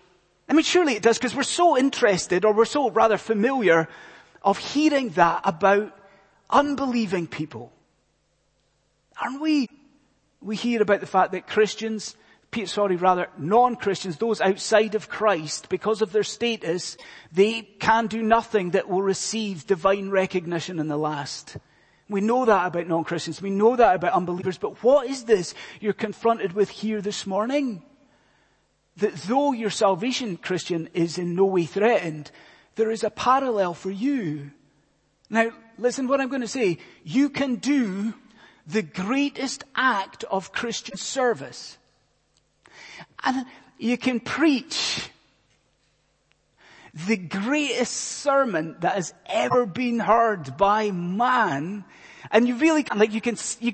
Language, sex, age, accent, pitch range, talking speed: English, male, 30-49, British, 185-245 Hz, 140 wpm